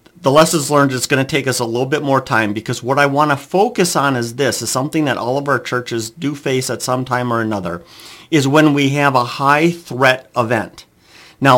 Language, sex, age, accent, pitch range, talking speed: English, male, 50-69, American, 120-155 Hz, 240 wpm